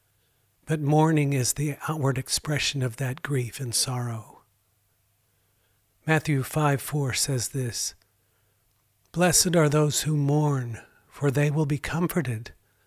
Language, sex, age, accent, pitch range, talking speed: English, male, 50-69, American, 125-150 Hz, 115 wpm